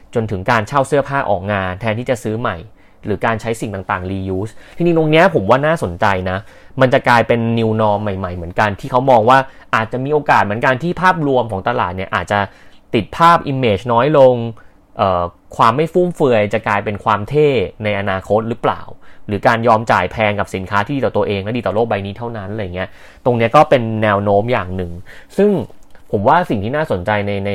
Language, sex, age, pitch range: Thai, male, 30-49, 100-125 Hz